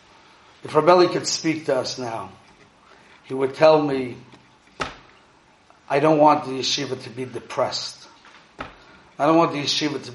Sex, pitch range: male, 140-180 Hz